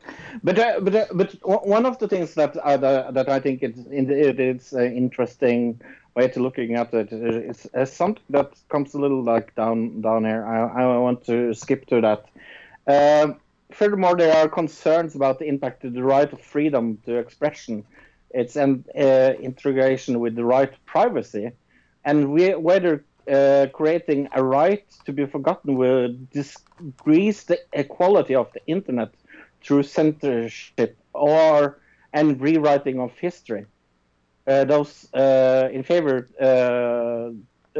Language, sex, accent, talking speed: English, male, Norwegian, 150 wpm